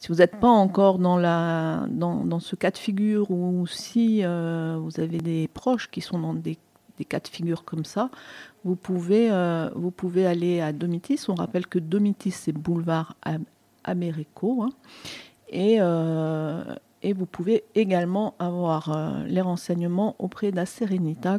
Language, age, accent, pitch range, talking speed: French, 50-69, French, 170-205 Hz, 145 wpm